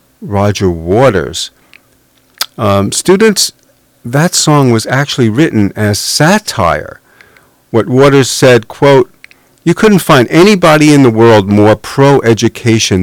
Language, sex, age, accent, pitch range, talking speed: English, male, 50-69, American, 95-135 Hz, 110 wpm